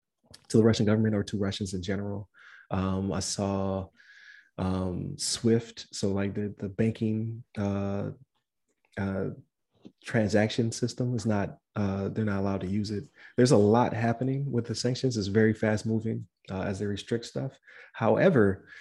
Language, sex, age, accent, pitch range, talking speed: English, male, 30-49, American, 100-115 Hz, 155 wpm